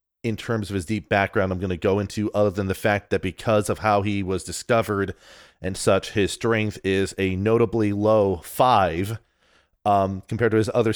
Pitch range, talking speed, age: 95-115 Hz, 195 wpm, 30-49